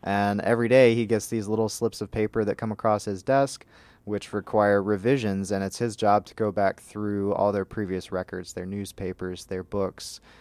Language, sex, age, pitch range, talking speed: English, male, 20-39, 95-110 Hz, 195 wpm